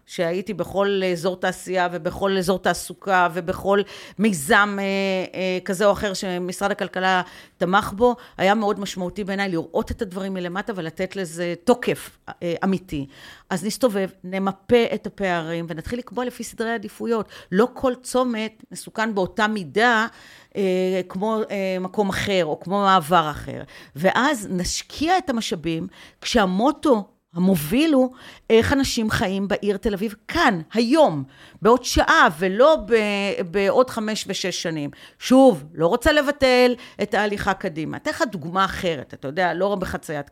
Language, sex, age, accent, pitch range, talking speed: Hebrew, female, 40-59, native, 175-220 Hz, 130 wpm